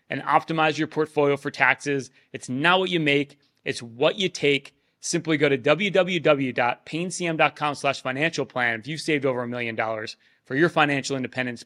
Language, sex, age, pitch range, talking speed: English, male, 30-49, 125-155 Hz, 165 wpm